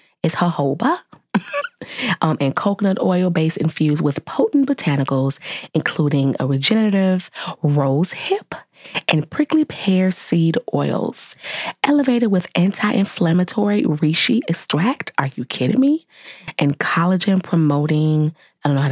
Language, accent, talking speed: English, American, 120 wpm